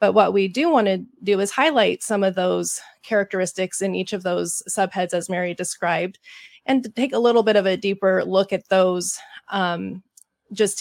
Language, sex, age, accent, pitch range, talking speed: English, female, 20-39, American, 190-225 Hz, 185 wpm